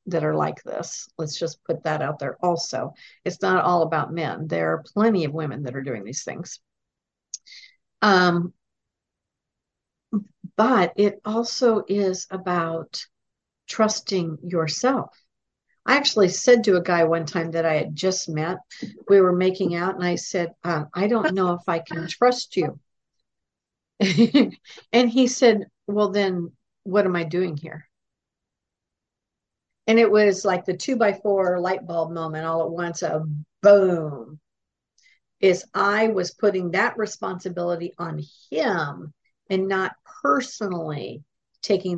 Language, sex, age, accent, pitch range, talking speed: English, female, 50-69, American, 165-210 Hz, 145 wpm